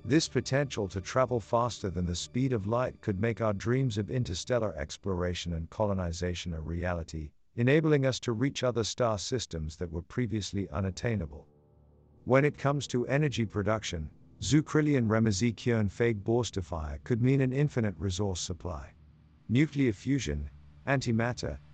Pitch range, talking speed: 85-120 Hz, 140 wpm